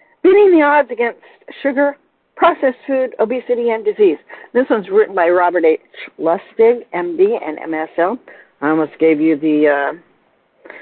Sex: female